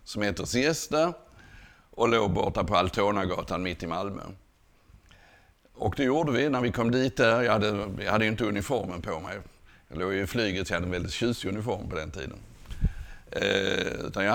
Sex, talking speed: male, 180 wpm